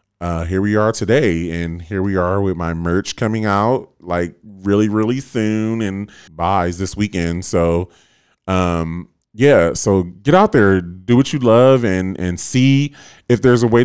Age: 30-49